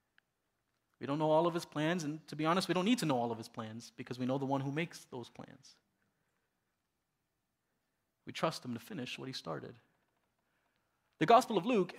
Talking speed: 205 wpm